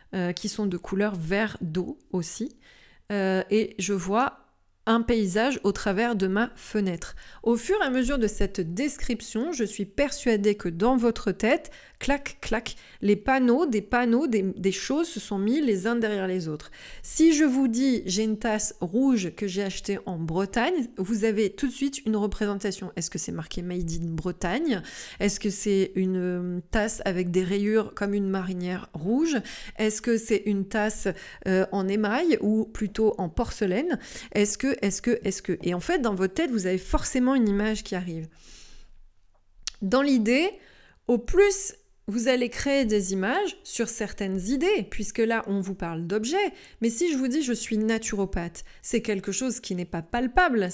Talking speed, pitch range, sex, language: 180 wpm, 190-245 Hz, female, French